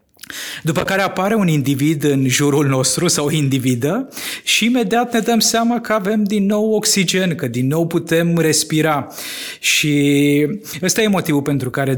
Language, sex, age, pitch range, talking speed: Romanian, male, 20-39, 135-165 Hz, 160 wpm